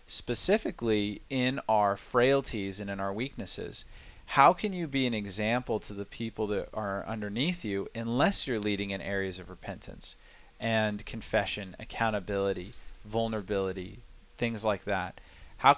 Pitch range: 100-130 Hz